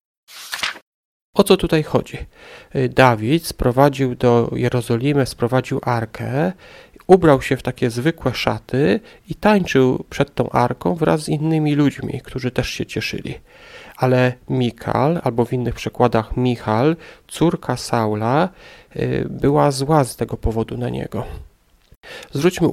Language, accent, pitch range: Polish, native, 125-155 Hz